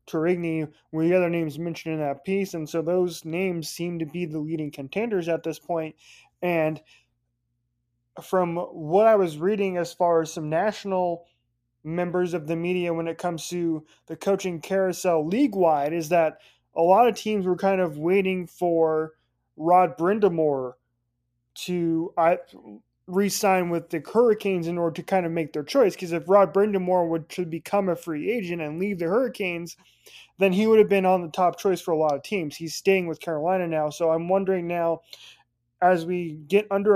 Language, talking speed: English, 185 wpm